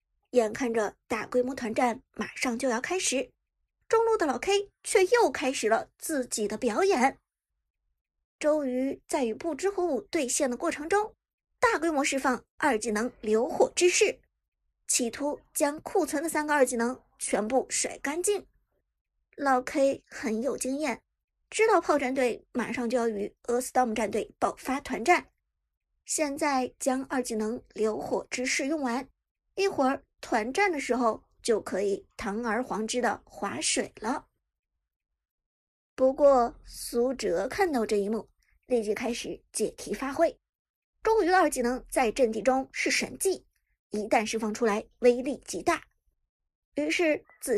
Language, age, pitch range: Chinese, 50-69, 245-345 Hz